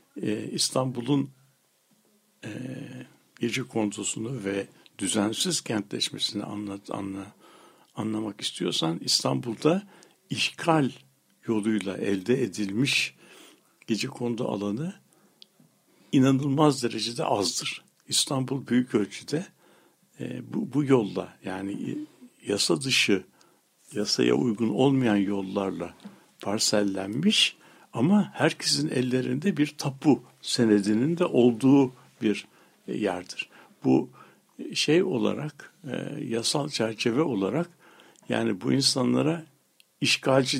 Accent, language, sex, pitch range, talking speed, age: native, Turkish, male, 110-155 Hz, 80 wpm, 60-79